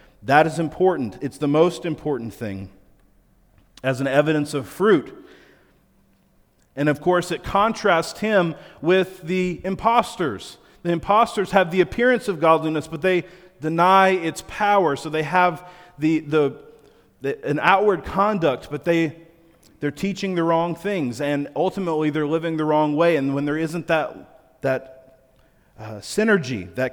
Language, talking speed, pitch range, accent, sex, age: English, 145 wpm, 125-165 Hz, American, male, 40-59